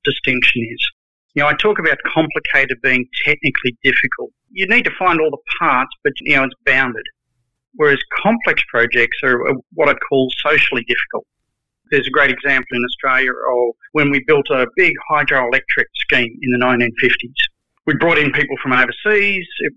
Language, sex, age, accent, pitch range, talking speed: English, male, 40-59, Australian, 125-165 Hz, 170 wpm